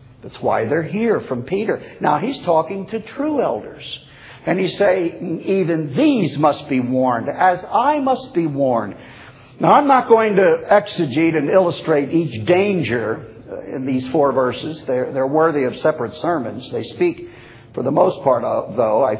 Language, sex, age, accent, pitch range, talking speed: English, male, 50-69, American, 125-205 Hz, 165 wpm